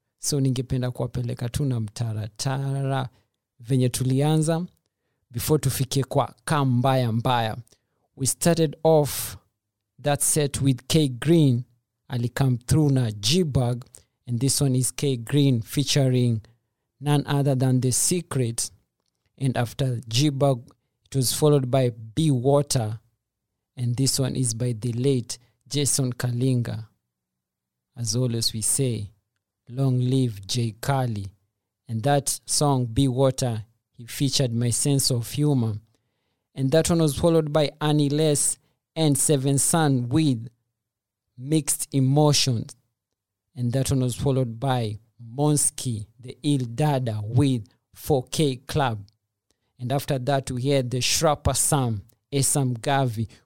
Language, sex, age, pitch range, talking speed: English, male, 50-69, 115-140 Hz, 120 wpm